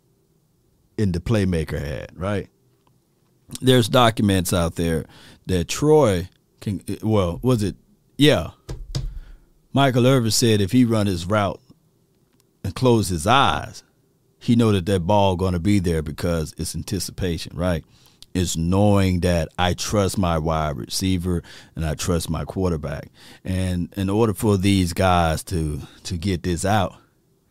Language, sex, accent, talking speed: English, male, American, 140 wpm